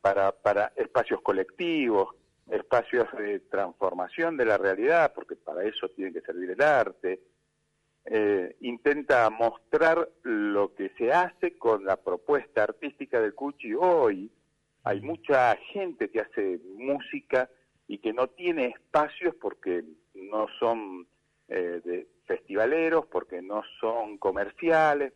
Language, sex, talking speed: Spanish, male, 125 wpm